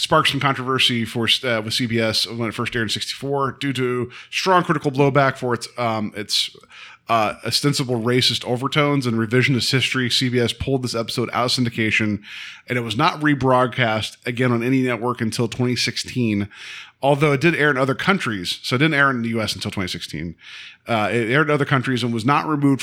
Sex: male